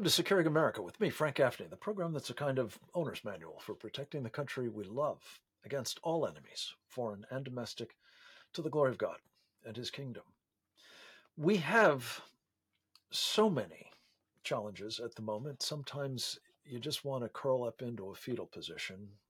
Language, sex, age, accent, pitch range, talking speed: English, male, 50-69, American, 105-145 Hz, 170 wpm